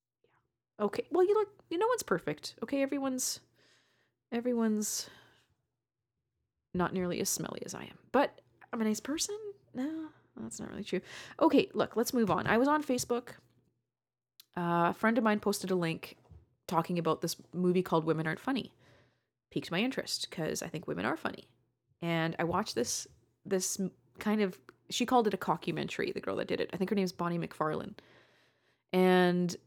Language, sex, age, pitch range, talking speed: English, female, 30-49, 155-220 Hz, 175 wpm